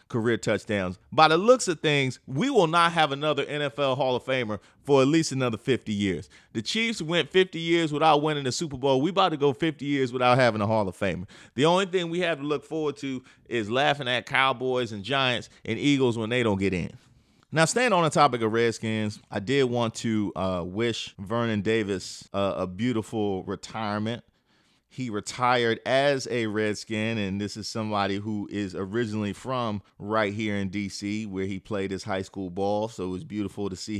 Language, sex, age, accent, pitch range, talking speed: English, male, 30-49, American, 105-130 Hz, 205 wpm